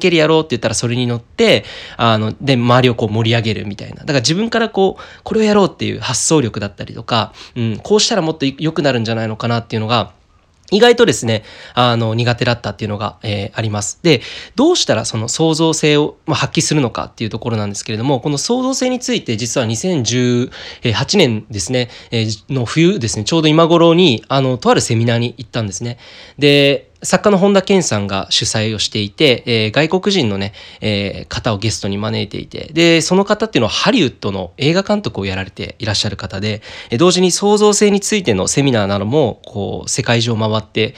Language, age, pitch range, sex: Japanese, 20-39, 110-165 Hz, male